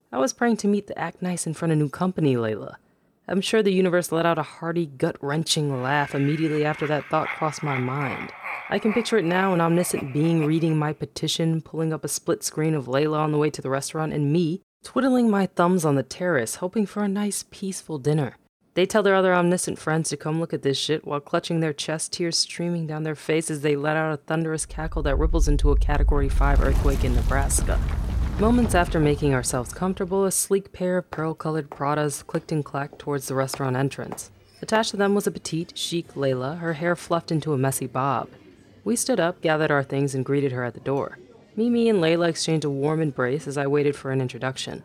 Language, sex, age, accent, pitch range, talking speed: English, female, 20-39, American, 140-180 Hz, 215 wpm